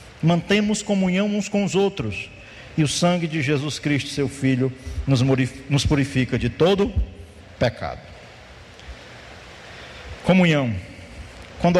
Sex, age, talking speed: male, 50-69, 105 wpm